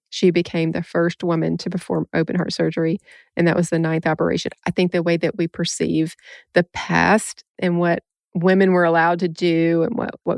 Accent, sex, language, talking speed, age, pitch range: American, female, English, 195 wpm, 30-49, 170-195 Hz